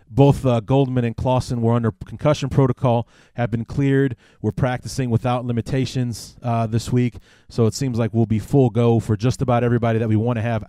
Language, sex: English, male